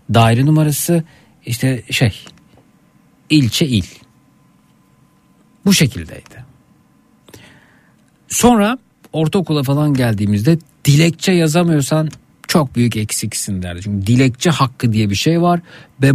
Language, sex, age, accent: Turkish, male, 60-79, native